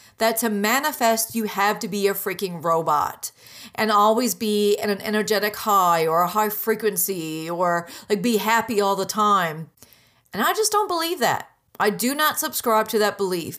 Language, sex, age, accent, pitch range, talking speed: English, female, 40-59, American, 195-245 Hz, 180 wpm